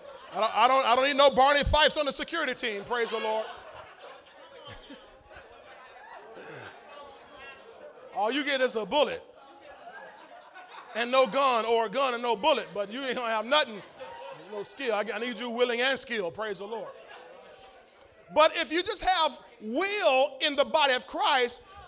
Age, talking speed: 40-59, 160 wpm